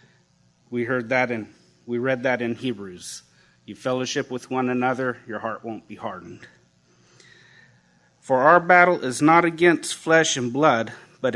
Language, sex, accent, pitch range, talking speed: English, male, American, 120-155 Hz, 155 wpm